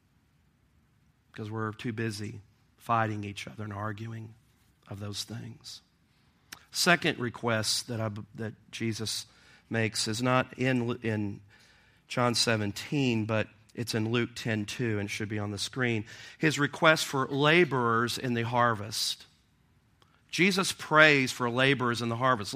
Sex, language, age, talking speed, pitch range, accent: male, English, 40-59, 135 wpm, 110-145 Hz, American